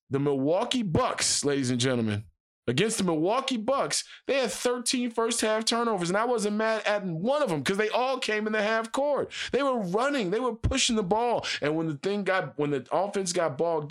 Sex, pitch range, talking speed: male, 150-215 Hz, 215 wpm